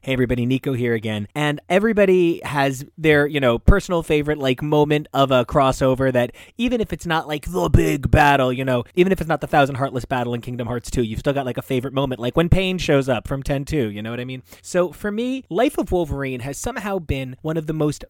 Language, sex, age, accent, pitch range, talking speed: English, male, 20-39, American, 125-165 Hz, 240 wpm